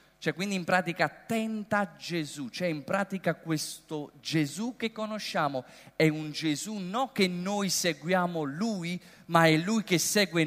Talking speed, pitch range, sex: 155 wpm, 200-305 Hz, male